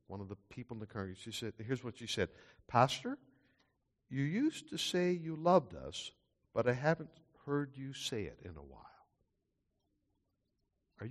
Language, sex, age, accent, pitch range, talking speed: English, male, 60-79, American, 105-160 Hz, 160 wpm